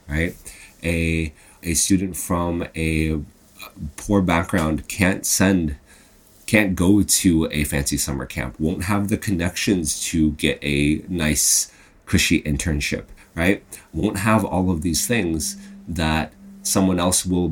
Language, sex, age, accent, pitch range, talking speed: English, male, 30-49, American, 75-95 Hz, 130 wpm